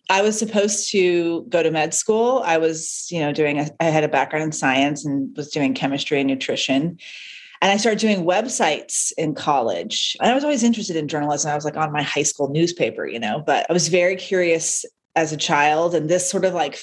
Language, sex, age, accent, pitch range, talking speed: English, female, 30-49, American, 160-215 Hz, 220 wpm